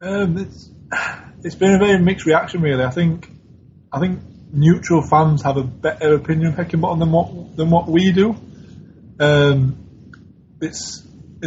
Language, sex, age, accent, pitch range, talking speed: English, male, 20-39, British, 135-155 Hz, 155 wpm